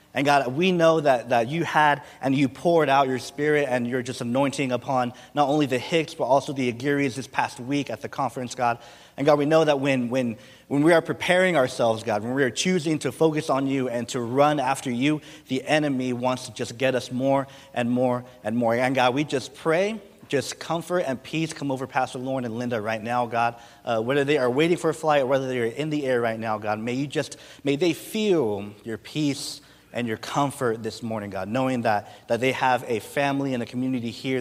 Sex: male